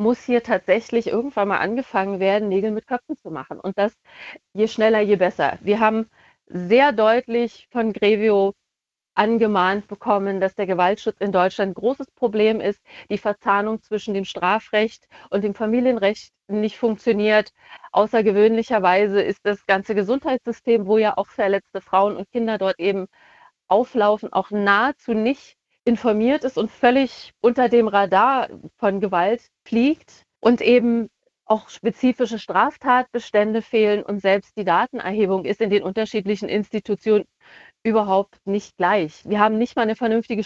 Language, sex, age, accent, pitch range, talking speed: German, female, 40-59, German, 200-230 Hz, 145 wpm